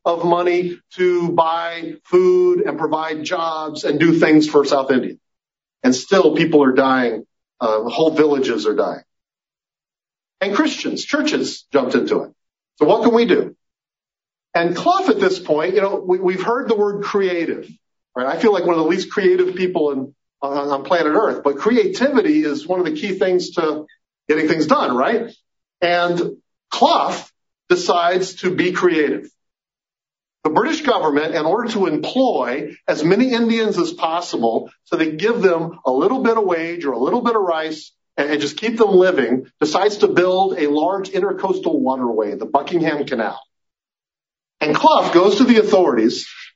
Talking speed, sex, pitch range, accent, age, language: 170 wpm, male, 160-220 Hz, American, 40-59, English